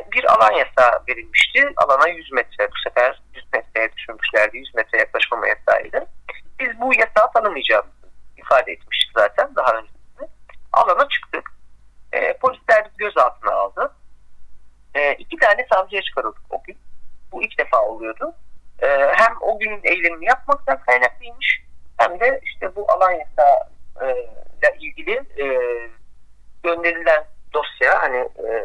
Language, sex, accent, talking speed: Turkish, male, native, 125 wpm